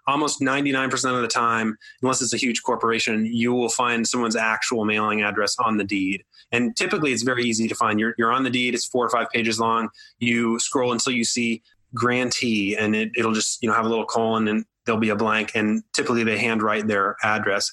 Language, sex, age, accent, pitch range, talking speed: English, male, 20-39, American, 110-125 Hz, 225 wpm